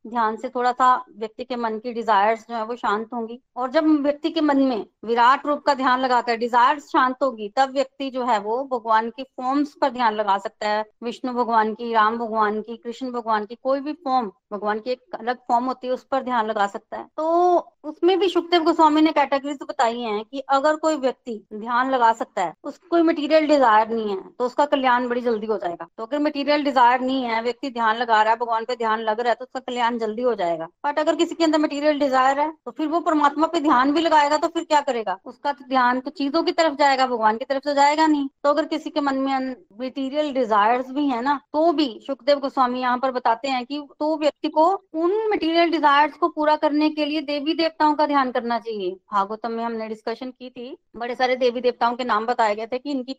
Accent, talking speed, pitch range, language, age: native, 215 wpm, 235-295 Hz, Hindi, 20-39